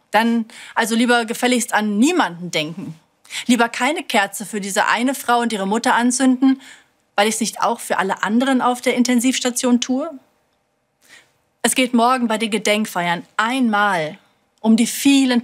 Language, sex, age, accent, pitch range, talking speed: German, female, 40-59, German, 195-245 Hz, 155 wpm